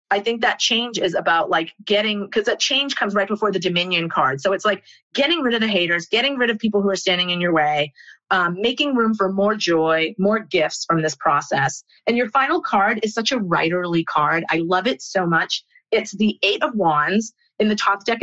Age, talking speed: 30-49, 225 wpm